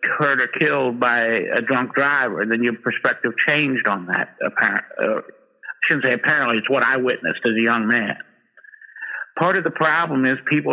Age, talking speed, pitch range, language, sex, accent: 60-79, 160 wpm, 125-150 Hz, English, male, American